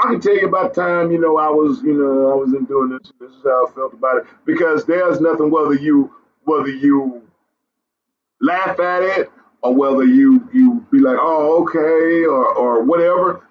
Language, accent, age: English, American, 40-59